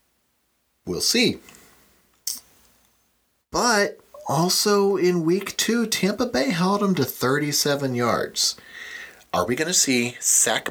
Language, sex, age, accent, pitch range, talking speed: English, male, 40-59, American, 105-160 Hz, 110 wpm